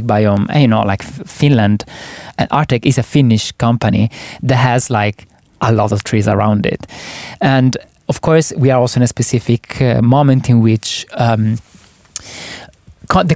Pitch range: 115-145 Hz